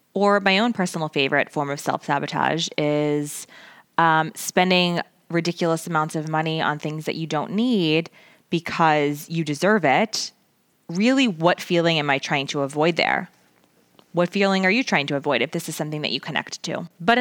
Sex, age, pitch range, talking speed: female, 20-39, 155-195 Hz, 175 wpm